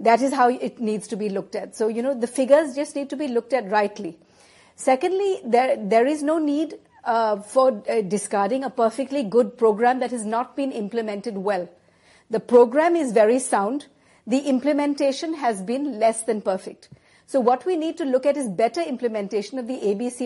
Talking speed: 195 wpm